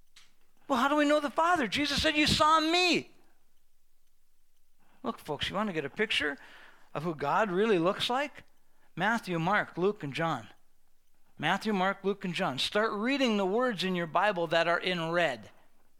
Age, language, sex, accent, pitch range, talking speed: 50-69, English, male, American, 190-255 Hz, 175 wpm